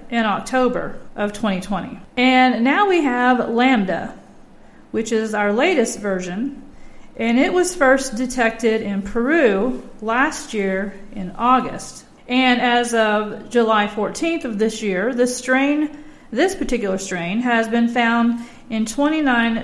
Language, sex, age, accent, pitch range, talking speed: English, female, 40-59, American, 210-255 Hz, 130 wpm